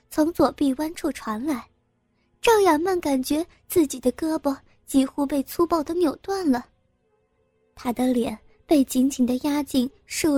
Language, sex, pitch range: Chinese, male, 250-325 Hz